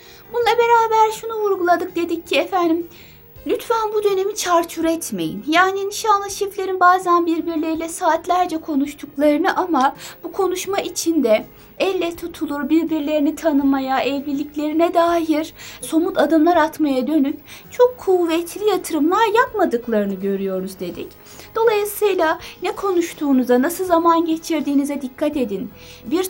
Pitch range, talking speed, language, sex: 285-365 Hz, 110 wpm, Turkish, female